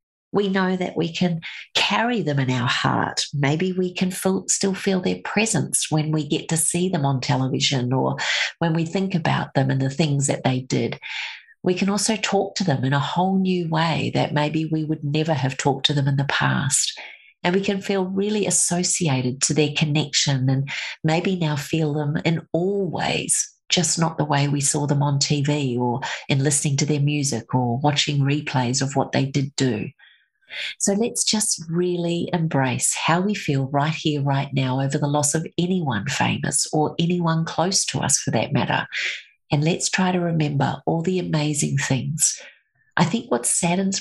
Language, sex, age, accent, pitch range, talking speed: English, female, 40-59, Australian, 140-175 Hz, 190 wpm